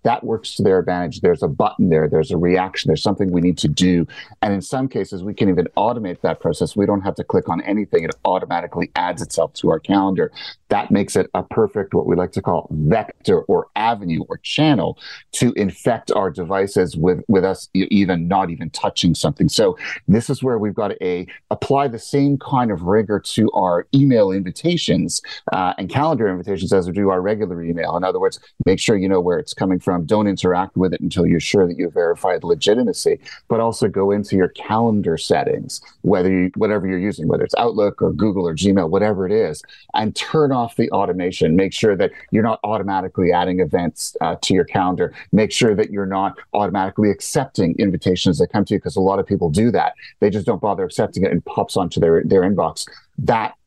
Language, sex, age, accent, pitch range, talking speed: English, male, 40-59, American, 90-105 Hz, 210 wpm